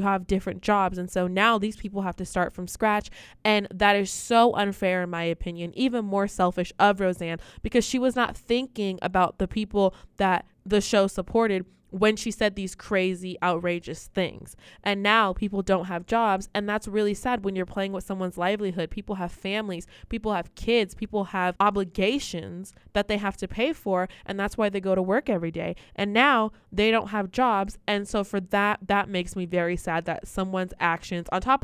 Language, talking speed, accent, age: English, 200 wpm, American, 20-39